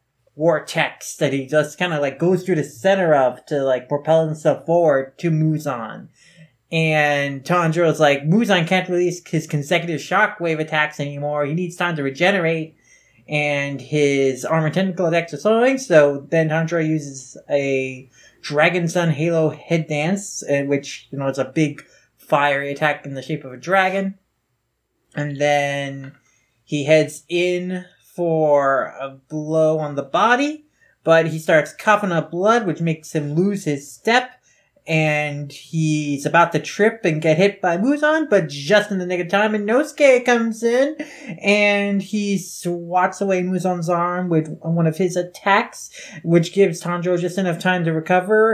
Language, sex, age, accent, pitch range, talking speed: English, male, 20-39, American, 150-190 Hz, 160 wpm